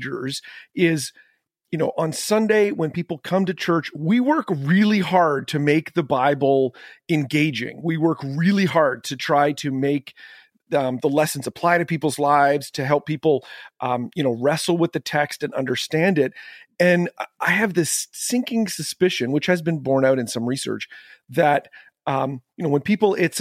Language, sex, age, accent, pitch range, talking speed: English, male, 40-59, American, 140-180 Hz, 175 wpm